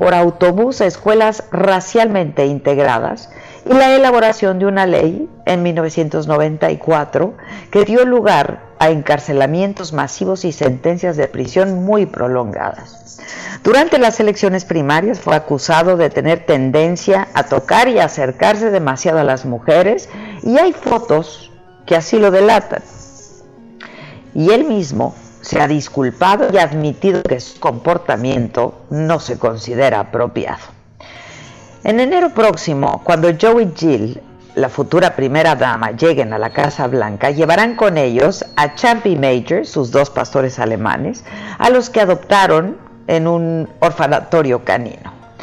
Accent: Mexican